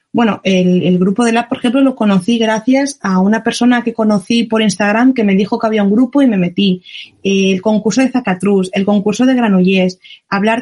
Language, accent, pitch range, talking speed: Spanish, Spanish, 190-235 Hz, 210 wpm